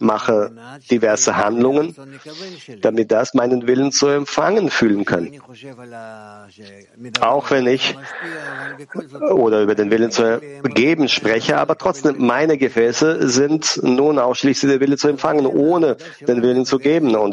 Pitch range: 110-140 Hz